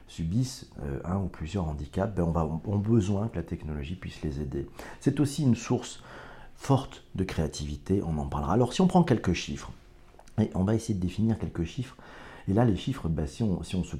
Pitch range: 80-110 Hz